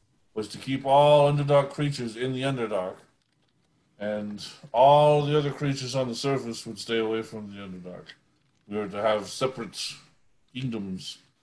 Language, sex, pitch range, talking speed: English, male, 105-130 Hz, 150 wpm